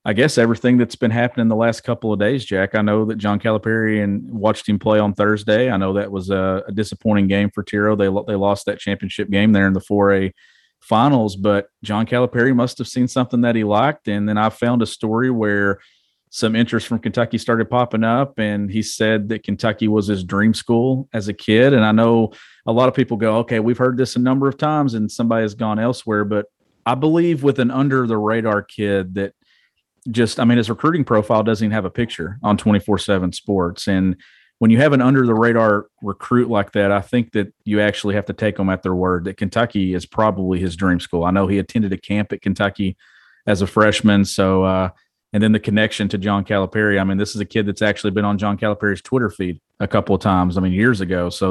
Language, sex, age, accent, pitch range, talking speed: English, male, 40-59, American, 100-115 Hz, 225 wpm